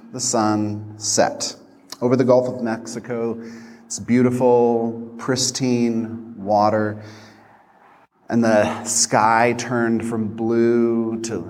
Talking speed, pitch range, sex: 100 wpm, 100-115 Hz, male